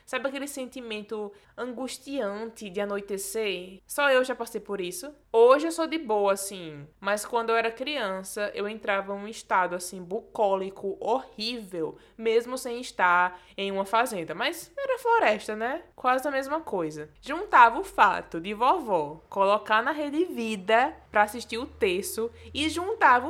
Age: 20-39